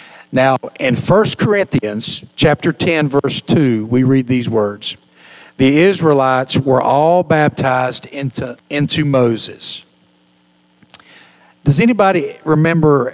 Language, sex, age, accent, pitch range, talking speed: English, male, 50-69, American, 125-155 Hz, 105 wpm